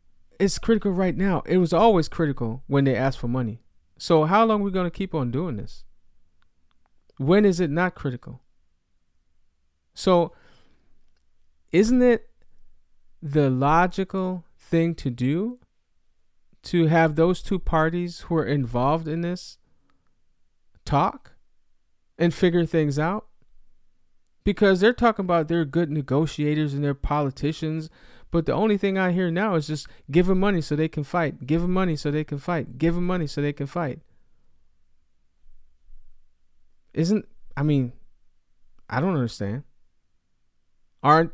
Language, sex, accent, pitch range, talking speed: English, male, American, 105-170 Hz, 145 wpm